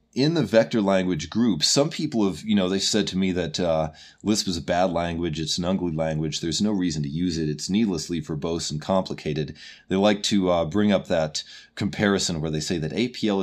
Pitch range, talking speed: 80-95 Hz, 220 wpm